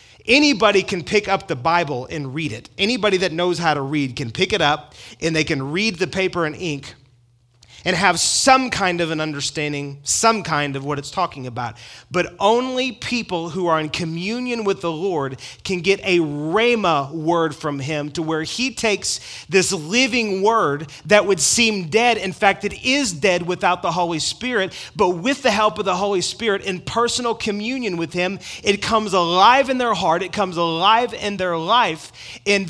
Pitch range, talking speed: 160-215 Hz, 190 wpm